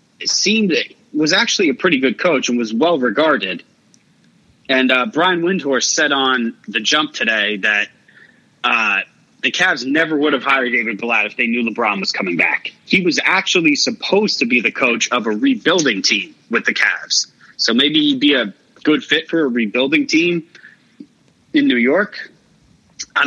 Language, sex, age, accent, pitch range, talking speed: English, male, 30-49, American, 130-185 Hz, 180 wpm